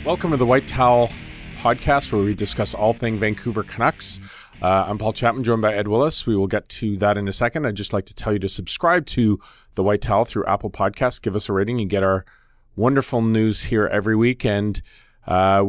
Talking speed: 220 wpm